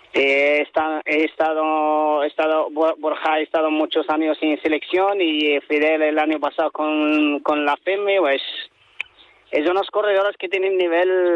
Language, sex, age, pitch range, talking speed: Spanish, male, 30-49, 145-165 Hz, 155 wpm